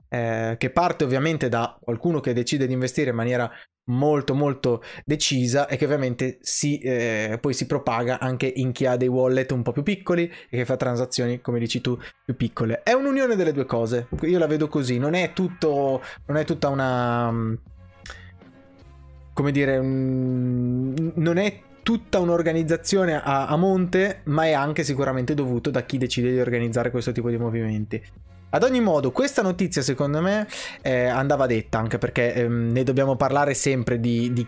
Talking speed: 175 wpm